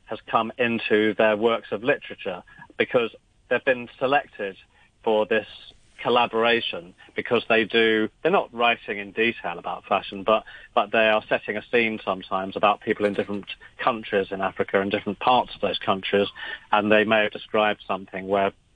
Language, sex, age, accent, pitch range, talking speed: English, male, 40-59, British, 105-120 Hz, 165 wpm